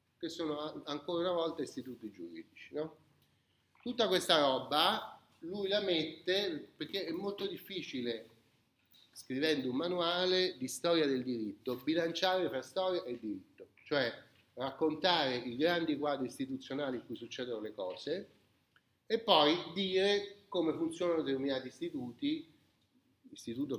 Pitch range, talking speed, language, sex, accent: 125-180 Hz, 120 wpm, Italian, male, native